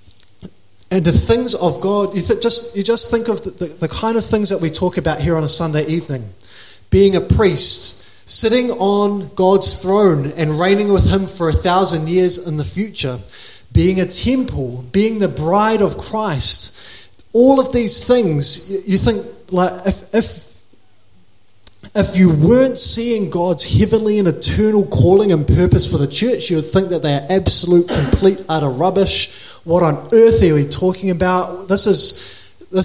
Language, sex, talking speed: English, male, 175 wpm